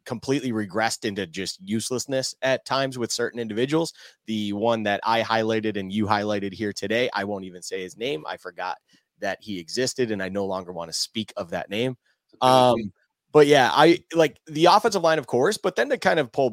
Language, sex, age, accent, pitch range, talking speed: English, male, 30-49, American, 105-130 Hz, 205 wpm